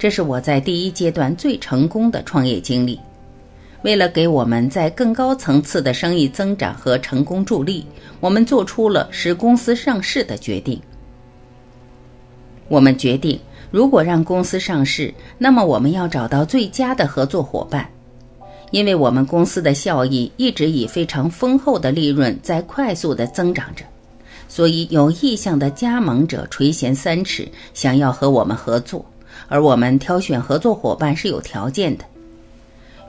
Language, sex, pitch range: Chinese, female, 135-195 Hz